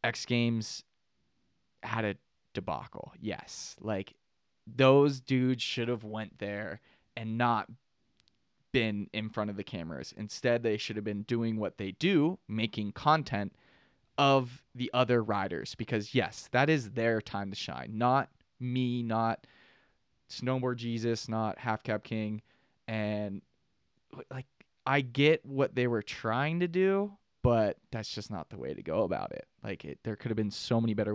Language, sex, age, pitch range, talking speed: English, male, 20-39, 110-140 Hz, 155 wpm